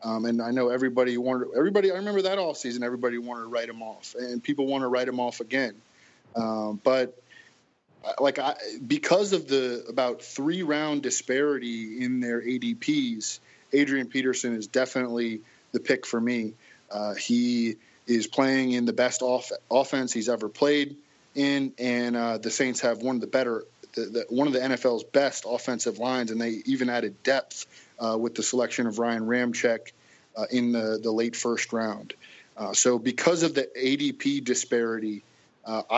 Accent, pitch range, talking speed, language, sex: American, 115-135 Hz, 170 wpm, English, male